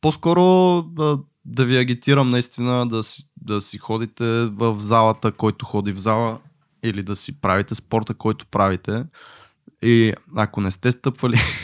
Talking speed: 150 wpm